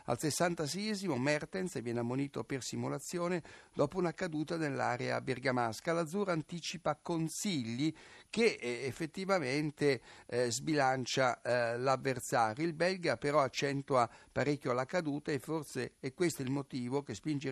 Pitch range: 120-155 Hz